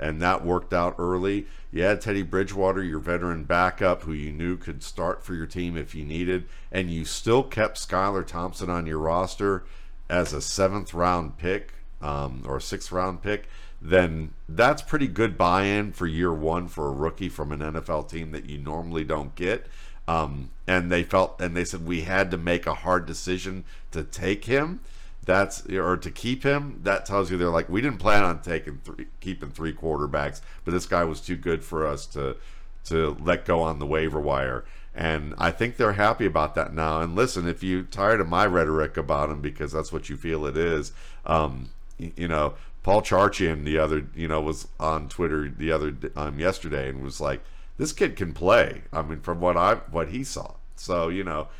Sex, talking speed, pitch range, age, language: male, 200 wpm, 80-95 Hz, 50-69, English